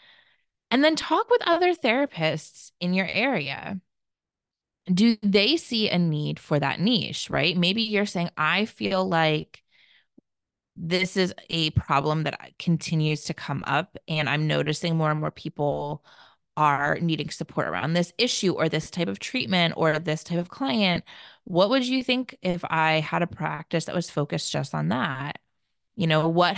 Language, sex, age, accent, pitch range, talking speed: English, female, 20-39, American, 155-225 Hz, 165 wpm